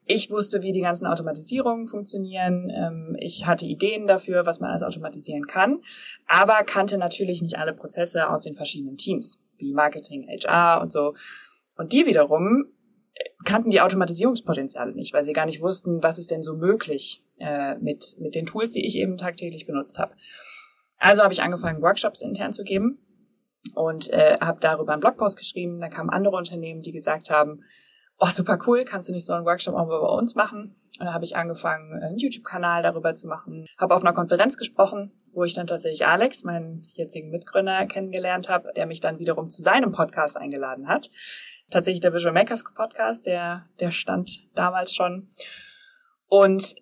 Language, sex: German, female